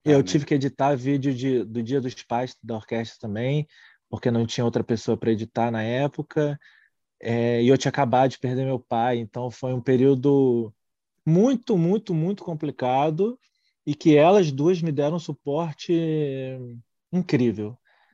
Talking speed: 160 wpm